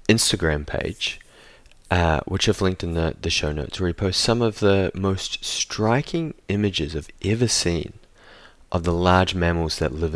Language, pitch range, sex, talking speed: English, 85-110 Hz, male, 170 wpm